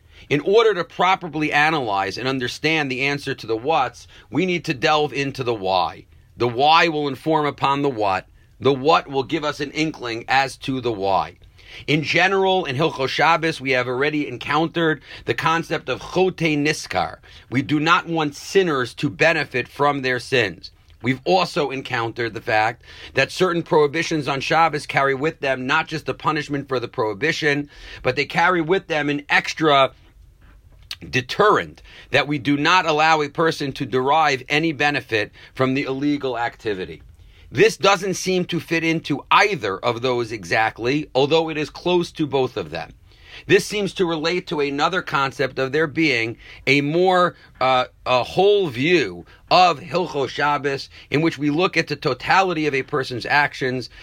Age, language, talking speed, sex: 40-59, English, 170 wpm, male